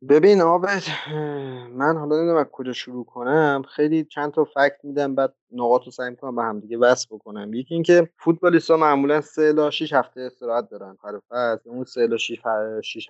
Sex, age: male, 30-49